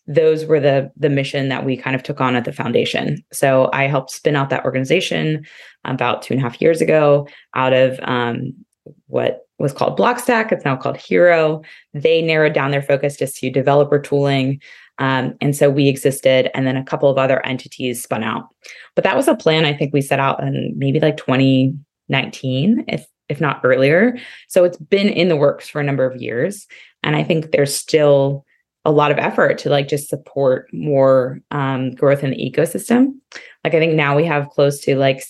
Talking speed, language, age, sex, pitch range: 200 wpm, English, 20-39, female, 130-155 Hz